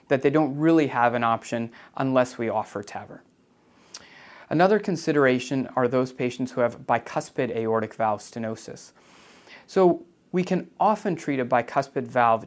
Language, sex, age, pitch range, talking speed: English, male, 30-49, 115-145 Hz, 145 wpm